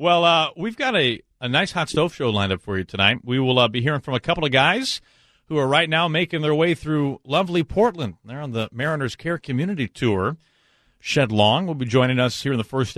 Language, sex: English, male